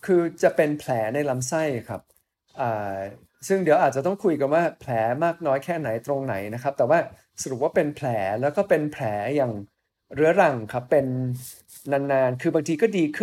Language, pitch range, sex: Thai, 125-160 Hz, male